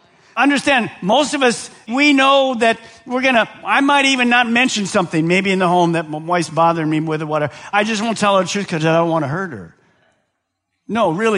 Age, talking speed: 50-69, 230 wpm